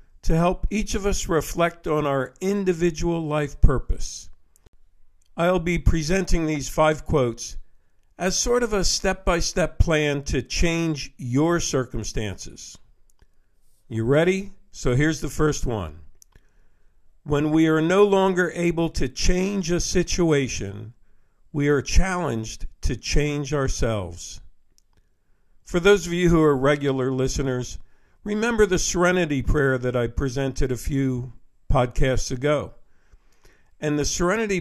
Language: English